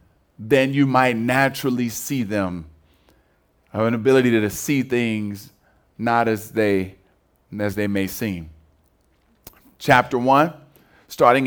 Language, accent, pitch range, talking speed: English, American, 110-135 Hz, 115 wpm